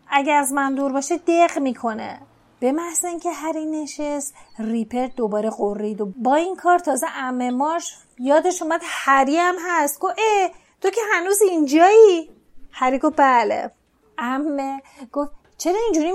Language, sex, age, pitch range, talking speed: Persian, female, 30-49, 245-320 Hz, 150 wpm